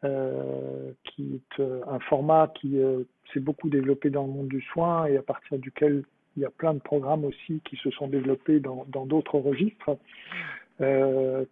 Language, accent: French, French